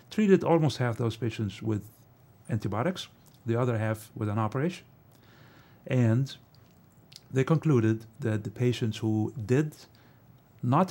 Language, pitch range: English, 110-135 Hz